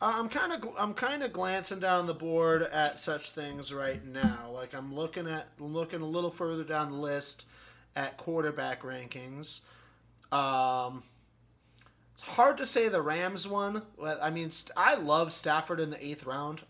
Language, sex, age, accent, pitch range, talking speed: English, male, 30-49, American, 130-155 Hz, 175 wpm